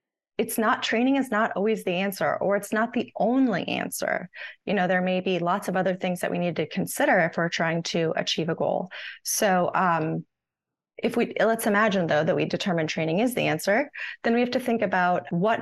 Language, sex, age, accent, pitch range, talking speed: English, female, 20-39, American, 170-205 Hz, 215 wpm